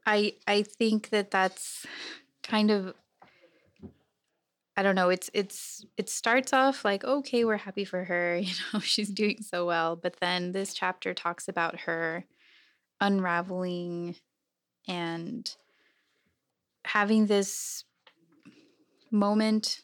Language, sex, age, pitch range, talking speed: English, female, 20-39, 180-215 Hz, 120 wpm